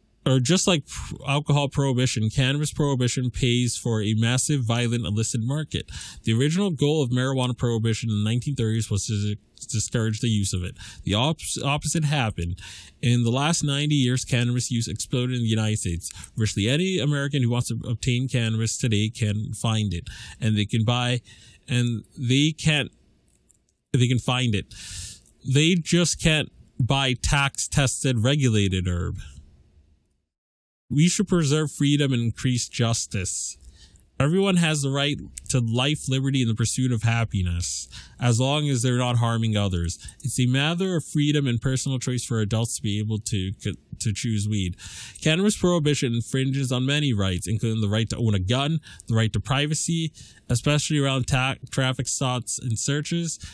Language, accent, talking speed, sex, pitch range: English, American, 160 wpm, male, 110-140 Hz